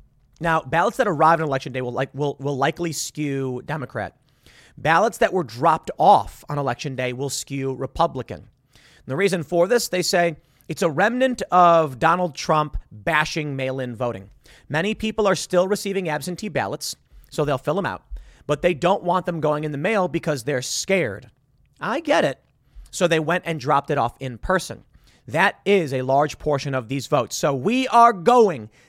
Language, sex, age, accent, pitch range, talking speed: English, male, 30-49, American, 135-180 Hz, 180 wpm